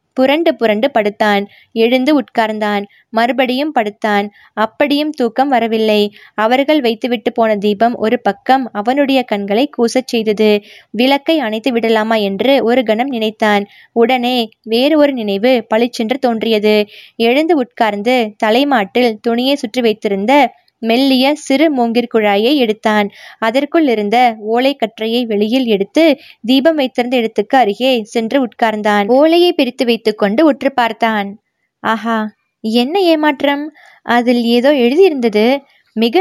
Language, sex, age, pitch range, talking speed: Tamil, female, 20-39, 215-260 Hz, 90 wpm